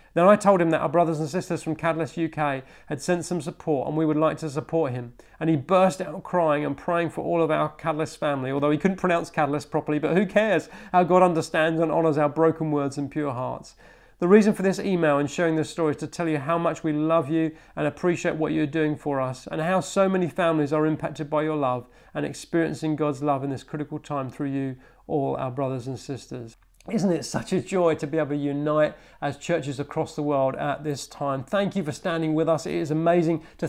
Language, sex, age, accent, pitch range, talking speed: English, male, 40-59, British, 150-170 Hz, 240 wpm